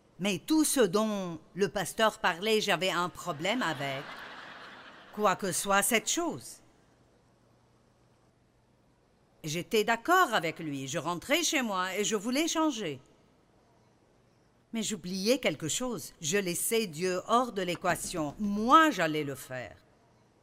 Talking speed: 125 wpm